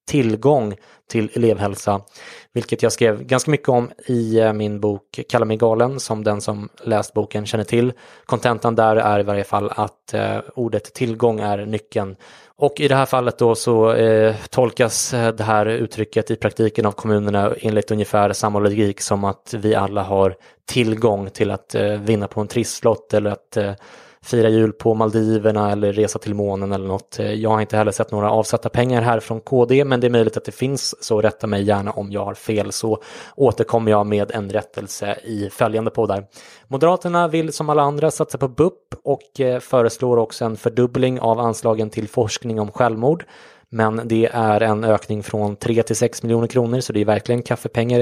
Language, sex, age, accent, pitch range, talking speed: English, male, 20-39, Swedish, 105-120 Hz, 180 wpm